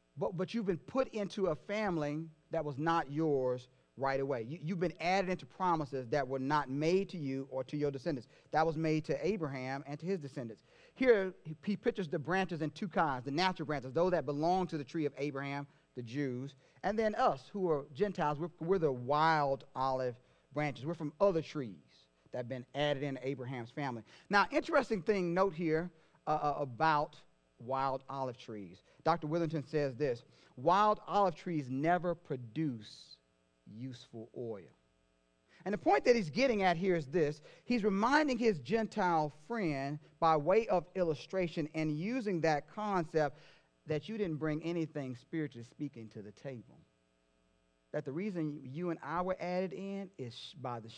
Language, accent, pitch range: English, American, 130-180 Hz